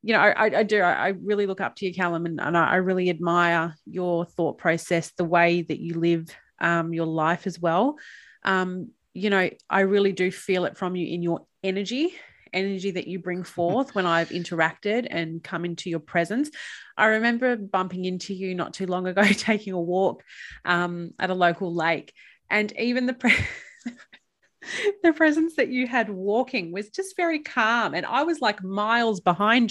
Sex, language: female, English